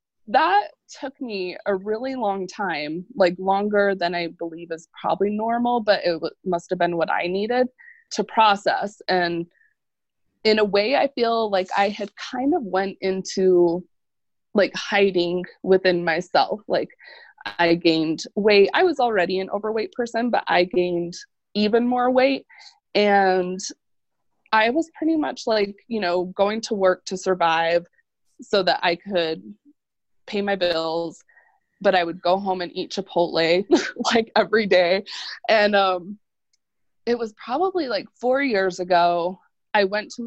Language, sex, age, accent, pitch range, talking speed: English, female, 20-39, American, 180-235 Hz, 150 wpm